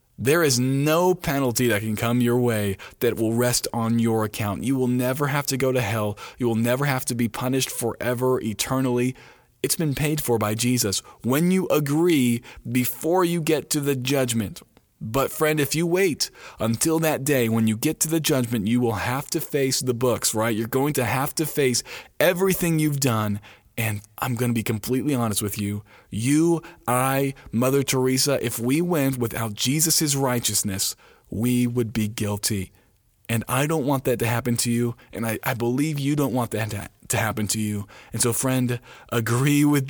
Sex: male